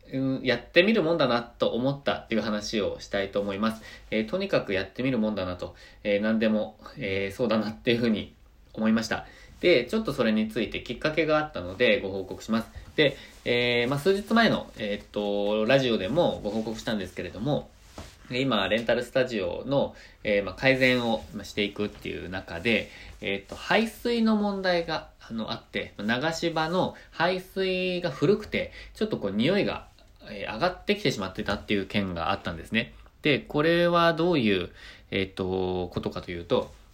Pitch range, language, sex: 100-160 Hz, Japanese, male